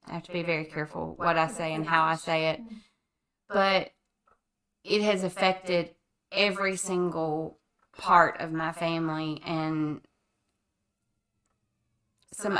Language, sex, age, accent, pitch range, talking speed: English, female, 20-39, American, 170-205 Hz, 125 wpm